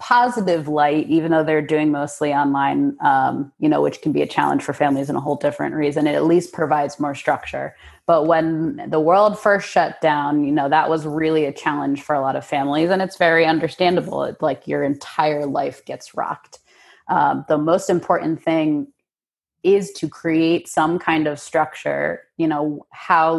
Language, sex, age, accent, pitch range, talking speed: English, female, 30-49, American, 150-180 Hz, 190 wpm